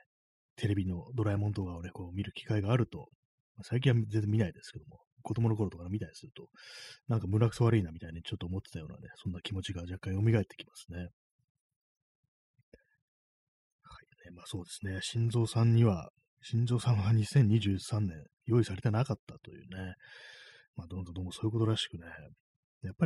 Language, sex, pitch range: Japanese, male, 90-120 Hz